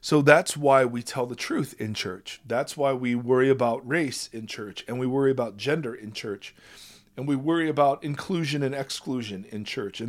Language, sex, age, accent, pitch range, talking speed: English, male, 40-59, American, 125-160 Hz, 200 wpm